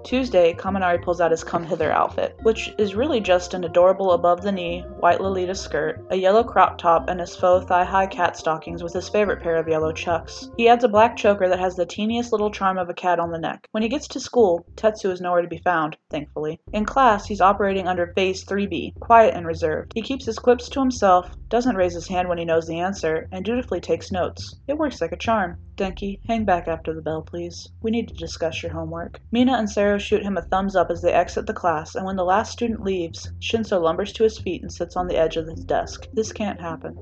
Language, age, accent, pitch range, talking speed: English, 20-39, American, 170-215 Hz, 235 wpm